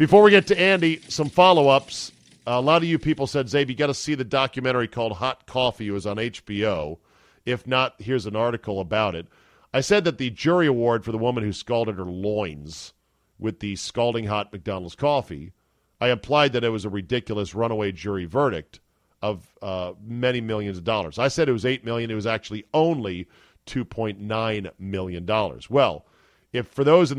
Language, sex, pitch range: English, male, 105-135 Hz